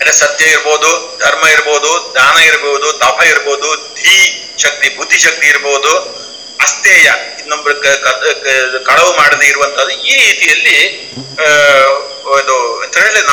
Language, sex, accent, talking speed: English, male, Indian, 70 wpm